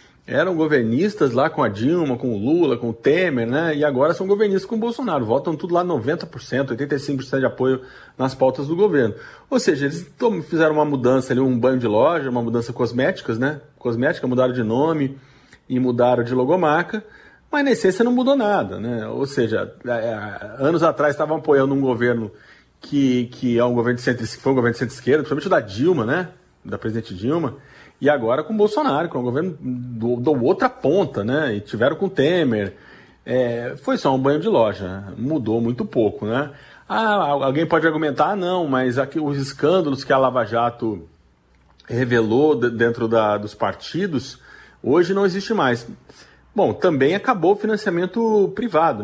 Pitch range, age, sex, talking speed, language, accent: 120-165 Hz, 40-59, male, 180 wpm, Portuguese, Brazilian